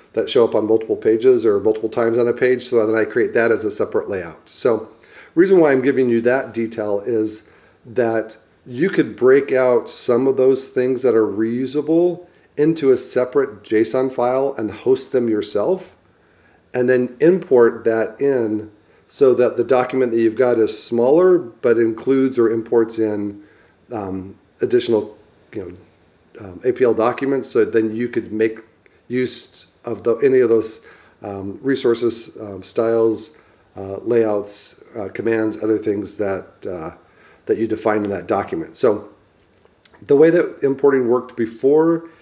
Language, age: English, 40-59